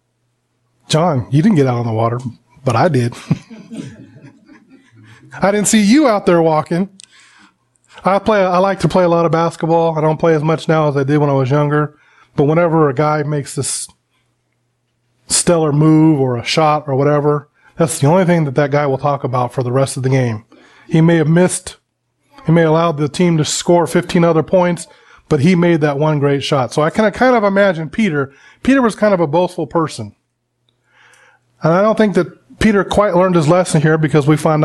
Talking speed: 210 wpm